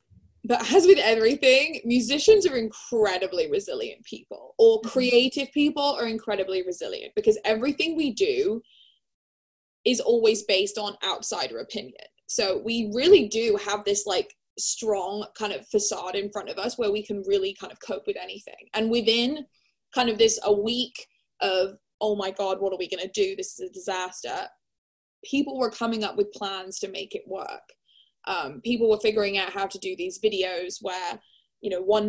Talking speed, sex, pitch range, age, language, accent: 175 wpm, female, 200-285 Hz, 20-39, English, British